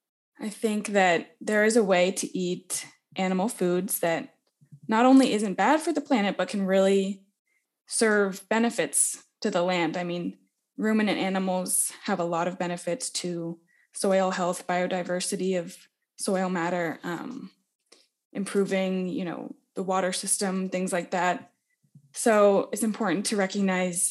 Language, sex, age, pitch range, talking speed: English, female, 20-39, 180-220 Hz, 145 wpm